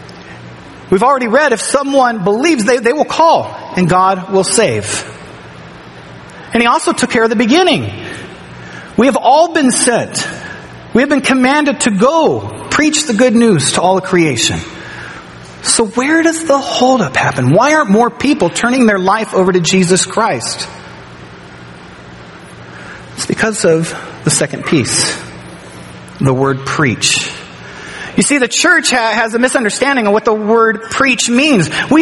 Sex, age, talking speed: male, 40-59, 150 wpm